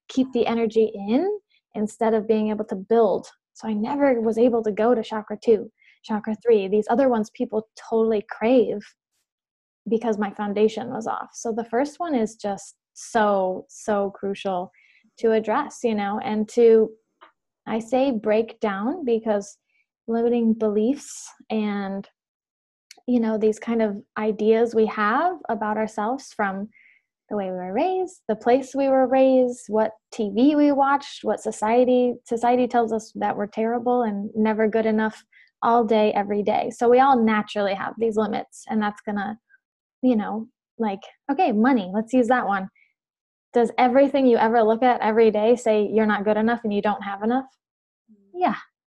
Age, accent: 10-29, American